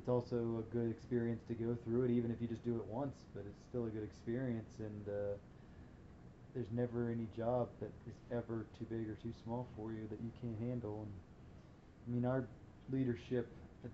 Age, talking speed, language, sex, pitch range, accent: 20-39, 205 wpm, English, male, 105-120 Hz, American